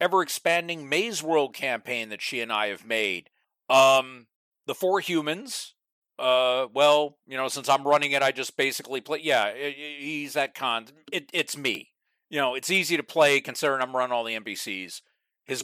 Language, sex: English, male